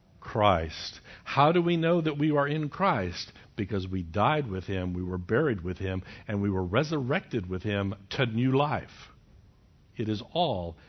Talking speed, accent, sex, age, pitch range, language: 175 wpm, American, male, 60-79, 110-175 Hz, English